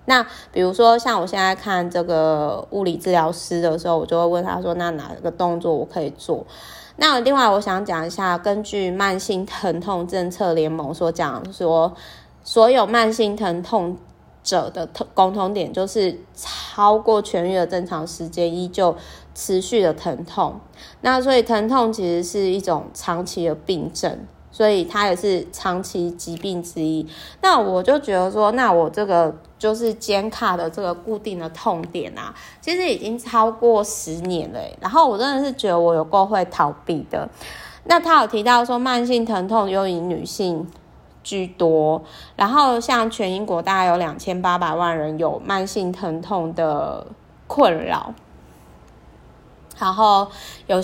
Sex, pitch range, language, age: female, 170-220 Hz, Chinese, 20-39